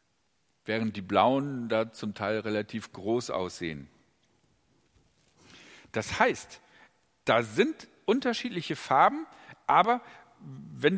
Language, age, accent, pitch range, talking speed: German, 50-69, German, 115-150 Hz, 95 wpm